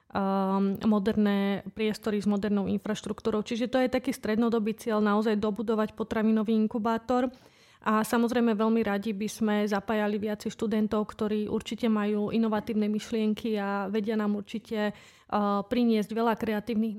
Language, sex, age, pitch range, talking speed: Slovak, female, 30-49, 210-225 Hz, 130 wpm